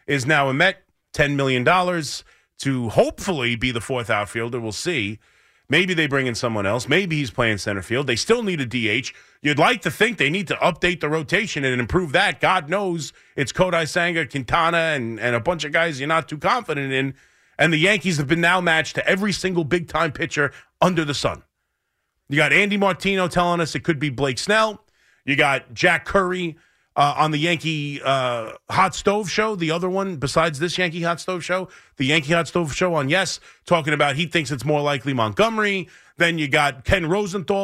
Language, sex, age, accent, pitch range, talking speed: English, male, 30-49, American, 140-185 Hz, 200 wpm